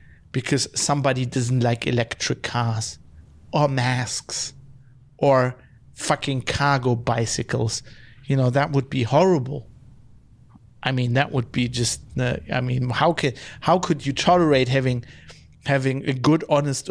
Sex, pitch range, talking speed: male, 125-150 Hz, 135 wpm